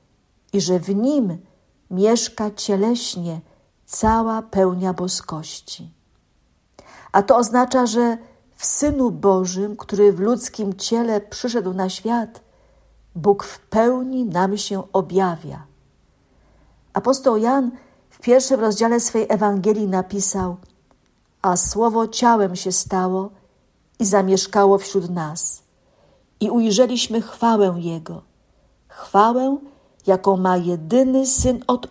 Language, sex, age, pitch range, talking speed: Polish, female, 50-69, 185-230 Hz, 105 wpm